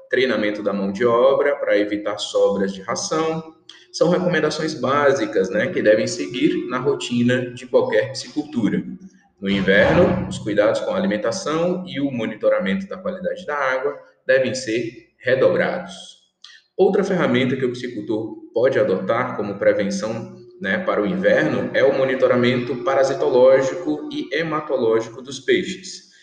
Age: 20-39